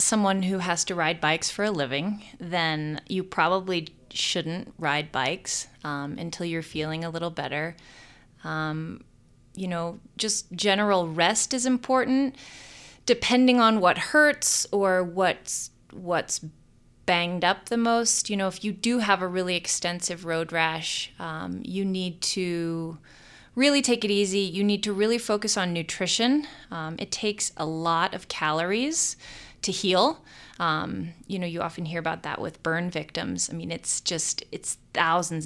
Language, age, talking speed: English, 20-39, 155 wpm